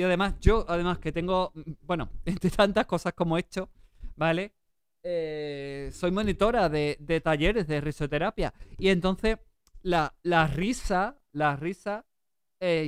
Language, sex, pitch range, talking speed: Spanish, male, 155-195 Hz, 140 wpm